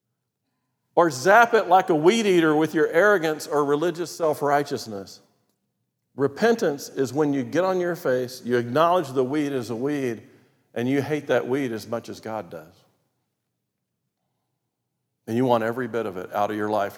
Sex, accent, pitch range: male, American, 125-155 Hz